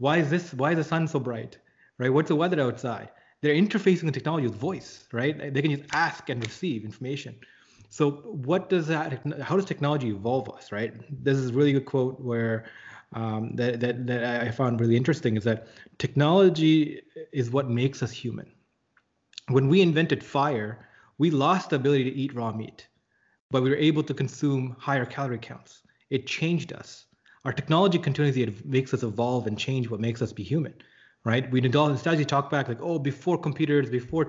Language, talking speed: English, 195 wpm